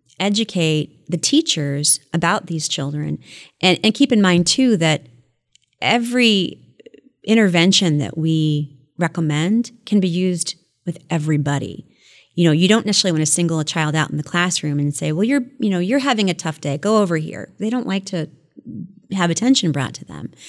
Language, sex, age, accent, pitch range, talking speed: English, female, 30-49, American, 155-195 Hz, 175 wpm